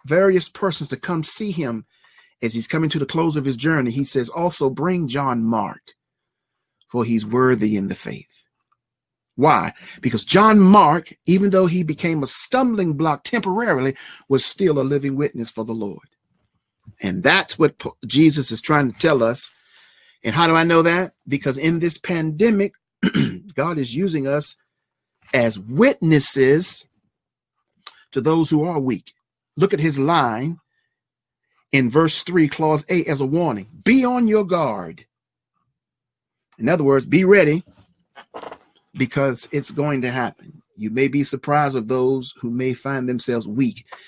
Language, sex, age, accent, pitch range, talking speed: English, male, 40-59, American, 130-170 Hz, 155 wpm